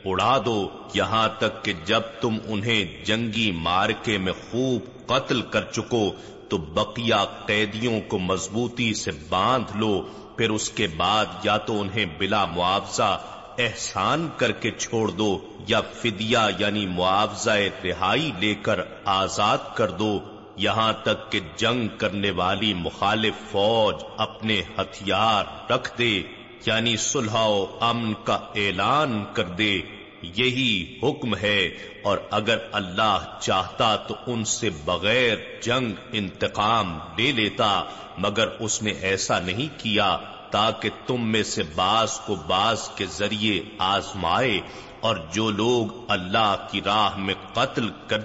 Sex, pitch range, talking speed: male, 100-115 Hz, 130 wpm